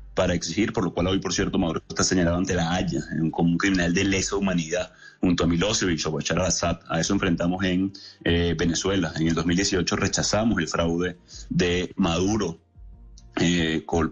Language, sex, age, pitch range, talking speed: Spanish, male, 30-49, 85-95 Hz, 170 wpm